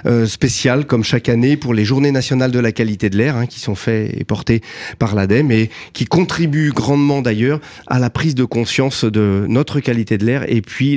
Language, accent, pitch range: French, French, 110-140 Hz